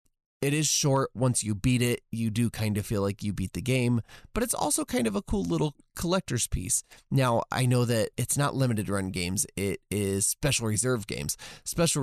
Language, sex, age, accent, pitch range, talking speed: English, male, 20-39, American, 95-125 Hz, 210 wpm